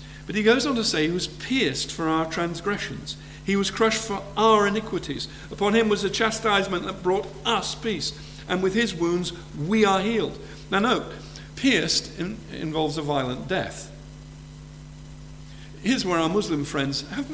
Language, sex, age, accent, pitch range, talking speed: English, male, 50-69, British, 145-205 Hz, 165 wpm